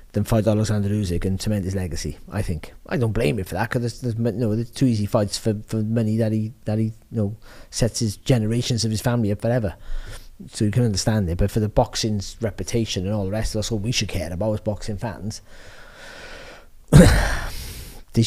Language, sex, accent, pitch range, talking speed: English, male, British, 100-125 Hz, 210 wpm